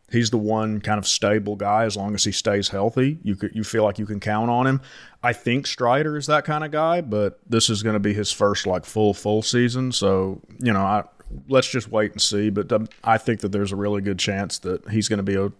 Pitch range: 105-125 Hz